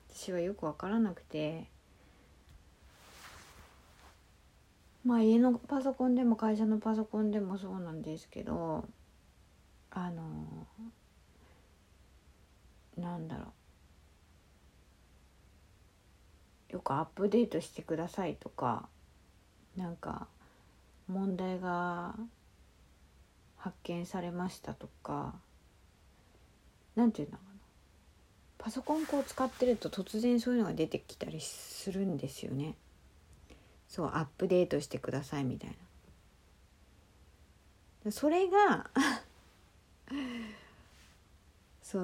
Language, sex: Japanese, female